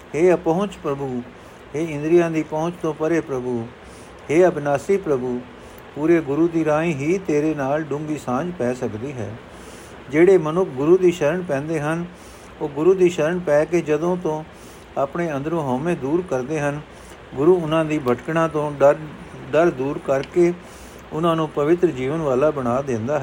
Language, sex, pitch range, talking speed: Punjabi, male, 130-165 Hz, 160 wpm